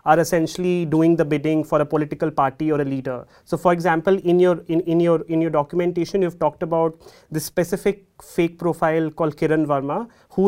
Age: 30-49